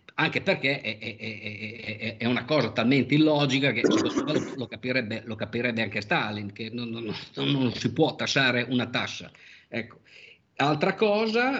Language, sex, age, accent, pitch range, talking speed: Italian, male, 50-69, native, 115-145 Hz, 155 wpm